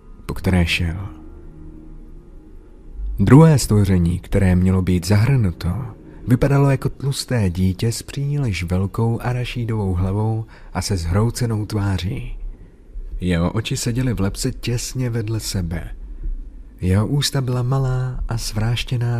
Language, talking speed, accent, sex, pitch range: Czech, 115 wpm, native, male, 95-125 Hz